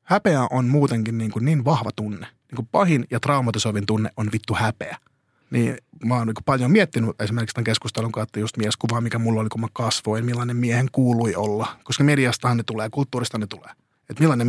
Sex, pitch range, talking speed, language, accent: male, 110-150 Hz, 185 wpm, Finnish, native